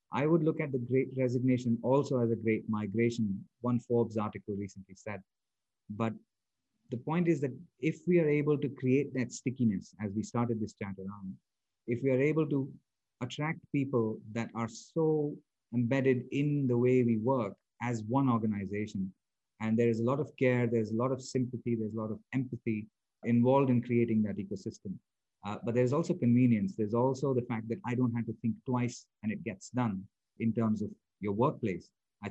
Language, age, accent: English, 50-69, Indian